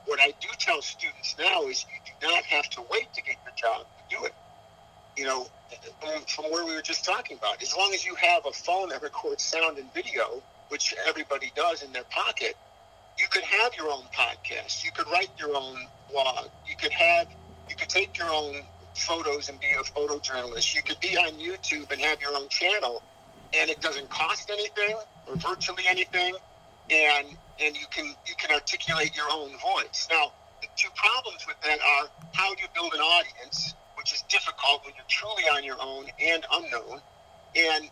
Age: 50-69